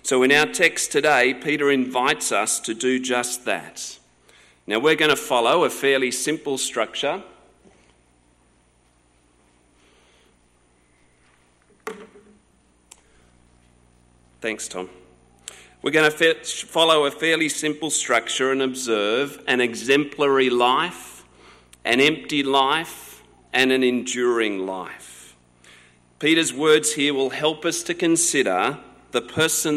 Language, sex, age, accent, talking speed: English, male, 40-59, Australian, 105 wpm